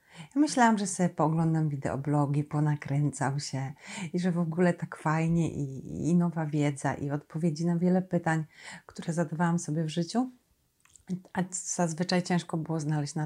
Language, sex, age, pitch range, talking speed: Polish, female, 40-59, 160-210 Hz, 150 wpm